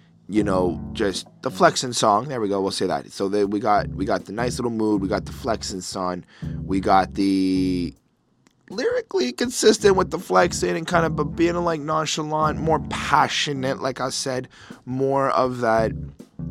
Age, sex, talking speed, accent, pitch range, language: 20-39, male, 180 wpm, American, 100-150 Hz, English